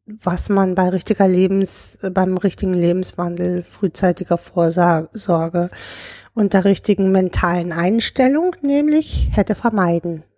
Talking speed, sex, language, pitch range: 105 wpm, female, German, 185-215 Hz